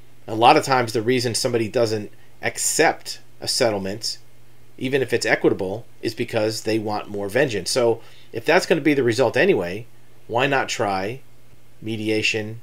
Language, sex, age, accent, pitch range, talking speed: English, male, 40-59, American, 115-130 Hz, 160 wpm